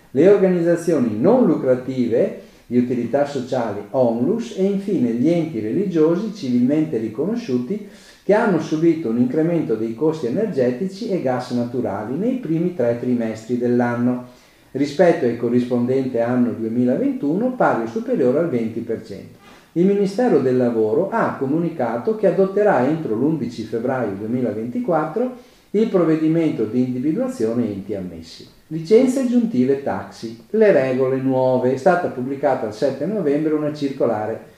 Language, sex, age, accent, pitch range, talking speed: Italian, male, 50-69, native, 120-180 Hz, 125 wpm